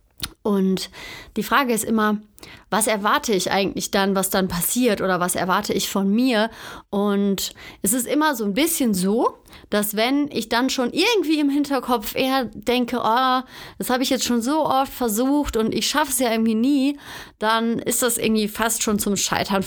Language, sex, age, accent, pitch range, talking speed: German, female, 30-49, German, 205-255 Hz, 185 wpm